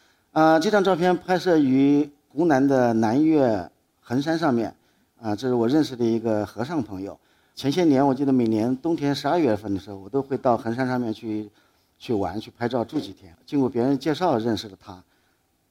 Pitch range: 105-145 Hz